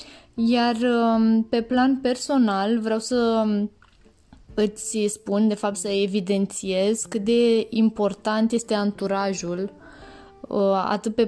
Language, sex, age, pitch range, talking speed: Romanian, female, 20-39, 195-220 Hz, 100 wpm